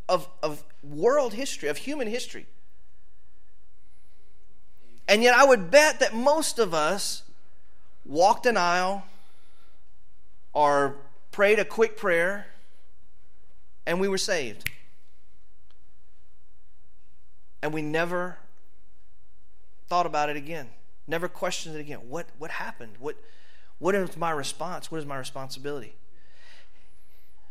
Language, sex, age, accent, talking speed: English, male, 30-49, American, 110 wpm